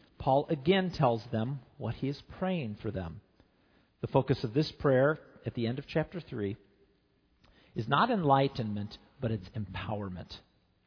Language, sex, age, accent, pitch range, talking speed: English, male, 50-69, American, 115-175 Hz, 150 wpm